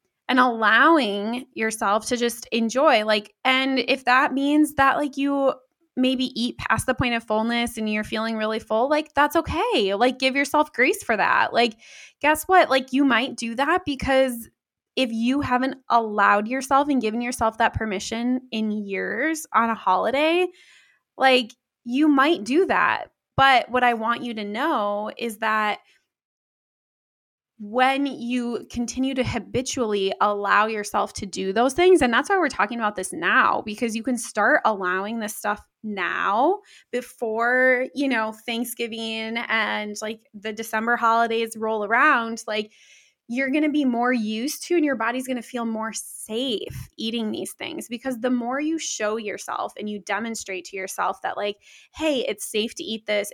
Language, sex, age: English, female, 20-39